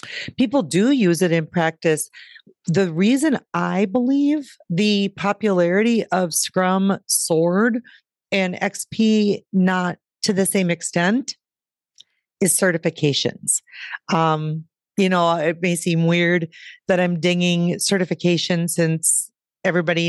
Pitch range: 165-205 Hz